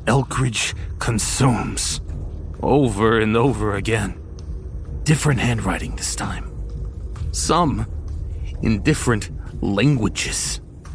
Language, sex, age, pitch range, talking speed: English, male, 30-49, 90-140 Hz, 75 wpm